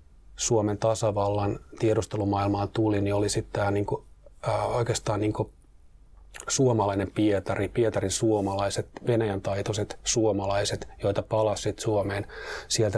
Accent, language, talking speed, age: native, Finnish, 115 wpm, 30-49